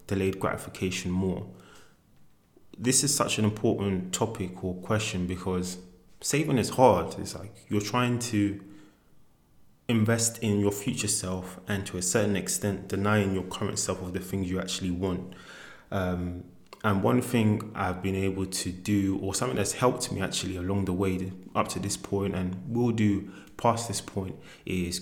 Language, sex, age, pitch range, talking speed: English, male, 20-39, 90-100 Hz, 165 wpm